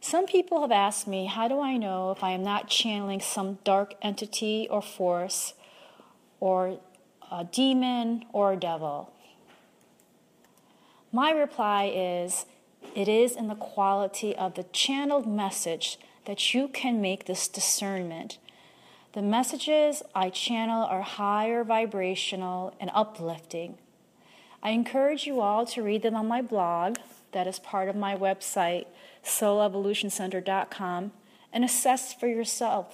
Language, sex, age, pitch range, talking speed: English, female, 30-49, 190-235 Hz, 135 wpm